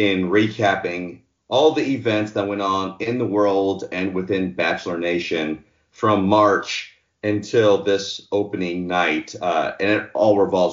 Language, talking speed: English, 145 wpm